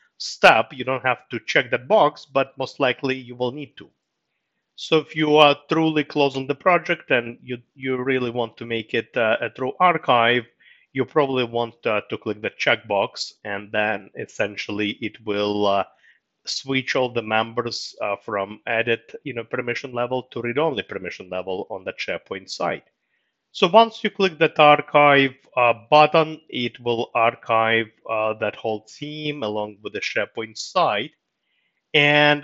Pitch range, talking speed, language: 110-145 Hz, 170 wpm, English